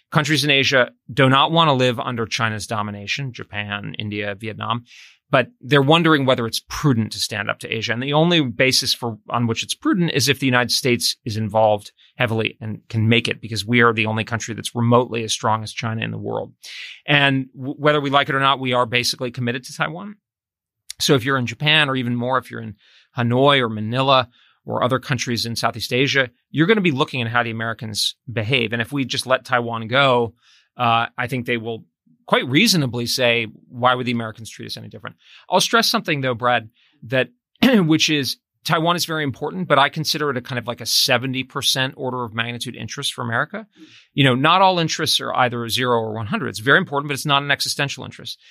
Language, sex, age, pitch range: English, male, 30-49, 115-140 Hz